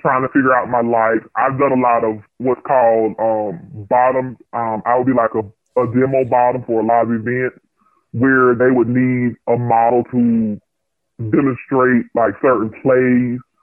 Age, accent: 20-39, American